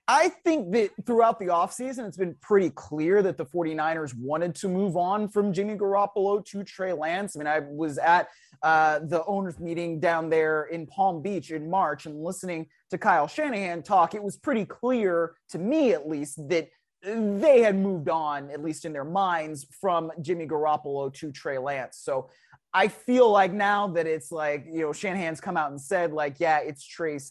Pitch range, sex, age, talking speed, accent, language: 155-200 Hz, male, 30-49, 195 wpm, American, English